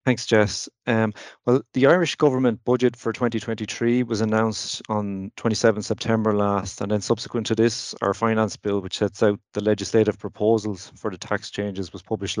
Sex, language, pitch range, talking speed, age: male, English, 100-115 Hz, 175 wpm, 30-49